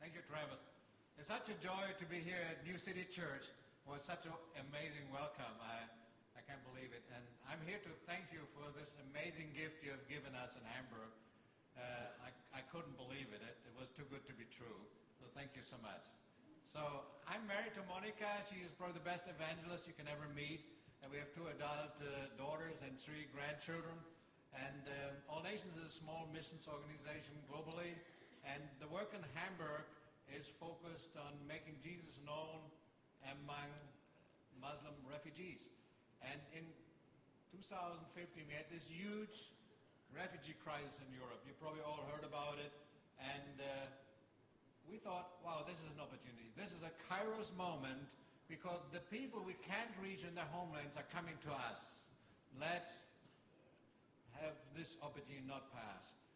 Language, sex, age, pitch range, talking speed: English, male, 60-79, 140-170 Hz, 170 wpm